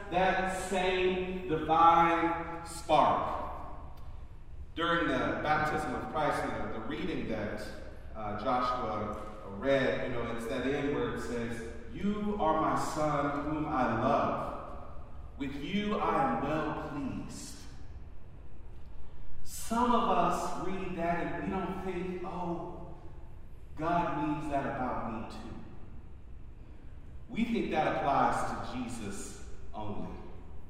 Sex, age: male, 40-59